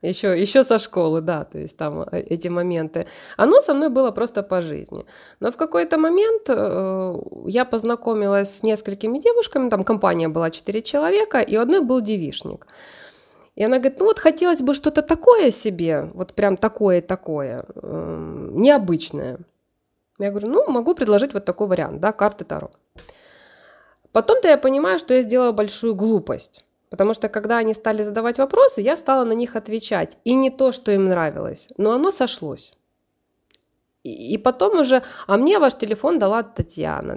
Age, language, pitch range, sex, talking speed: 20-39, Russian, 190-270 Hz, female, 165 wpm